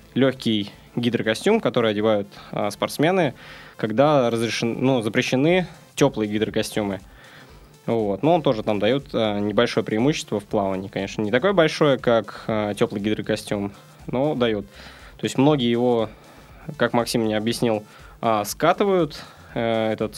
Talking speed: 115 wpm